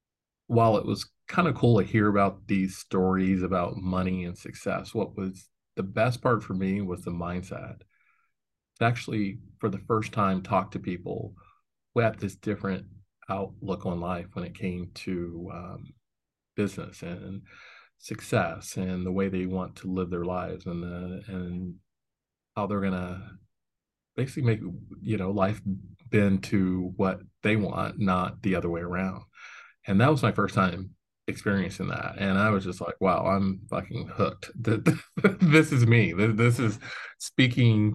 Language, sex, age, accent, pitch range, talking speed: English, male, 40-59, American, 95-105 Hz, 160 wpm